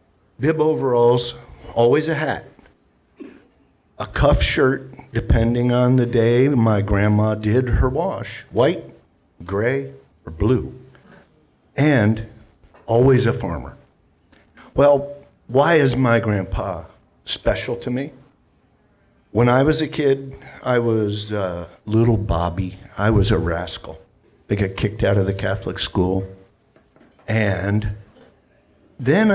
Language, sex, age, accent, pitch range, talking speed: English, male, 50-69, American, 100-140 Hz, 115 wpm